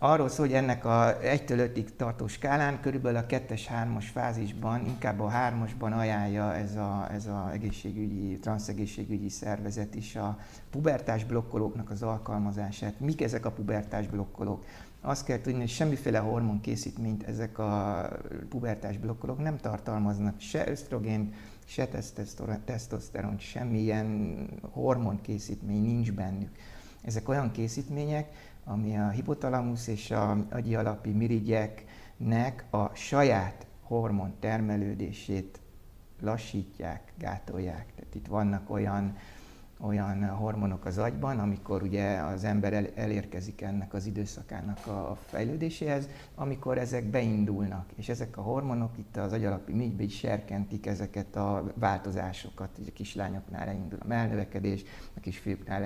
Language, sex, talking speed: Hungarian, male, 120 wpm